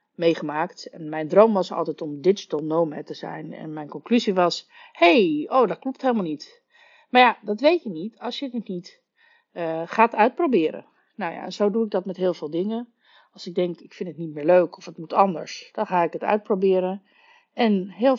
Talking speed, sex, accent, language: 220 wpm, female, Dutch, Dutch